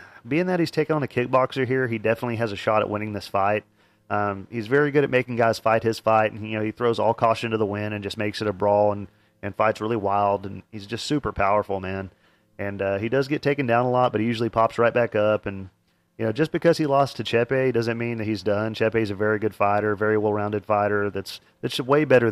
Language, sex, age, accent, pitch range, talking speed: English, male, 30-49, American, 100-120 Hz, 265 wpm